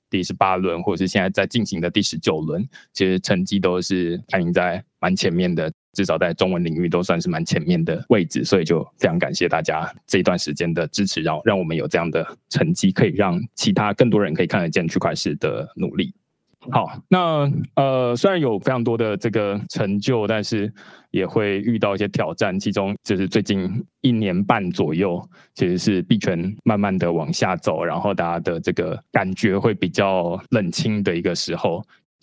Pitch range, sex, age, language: 95-120 Hz, male, 20-39, Chinese